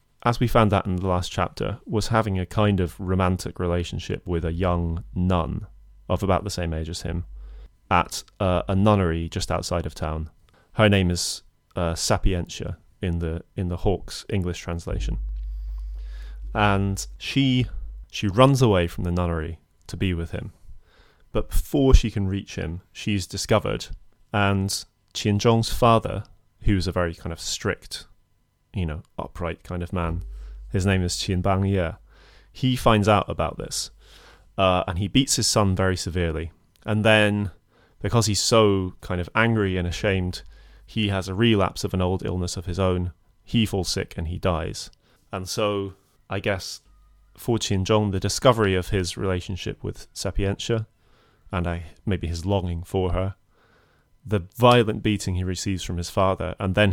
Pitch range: 85-105 Hz